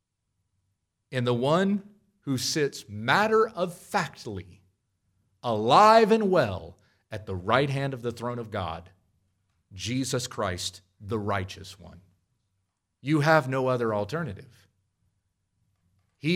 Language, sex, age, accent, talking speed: English, male, 40-59, American, 105 wpm